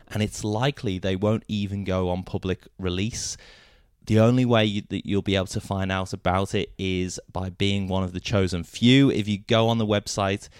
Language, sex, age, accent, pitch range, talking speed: English, male, 20-39, British, 95-110 Hz, 210 wpm